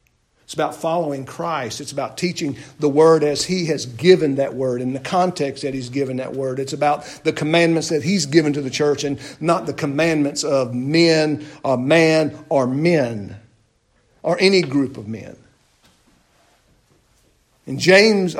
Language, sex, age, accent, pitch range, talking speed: English, male, 50-69, American, 130-190 Hz, 160 wpm